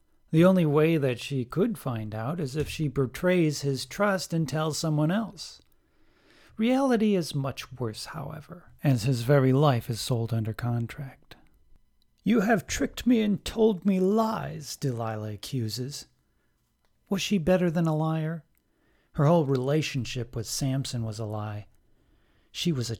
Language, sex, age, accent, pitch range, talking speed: English, male, 40-59, American, 115-175 Hz, 150 wpm